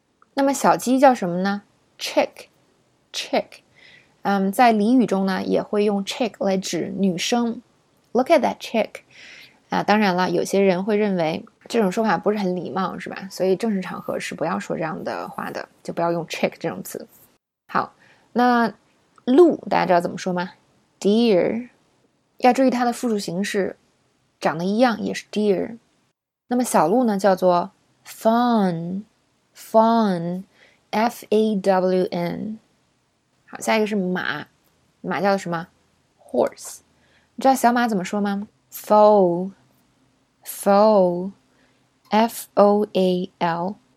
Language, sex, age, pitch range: Chinese, female, 20-39, 185-225 Hz